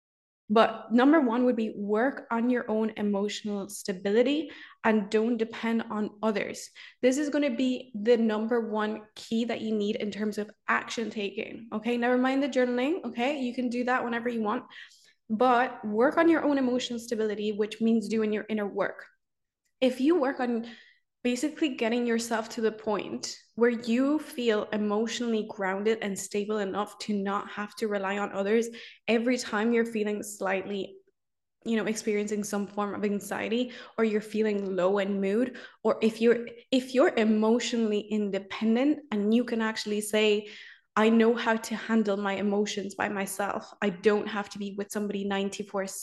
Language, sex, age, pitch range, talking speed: English, female, 10-29, 205-240 Hz, 170 wpm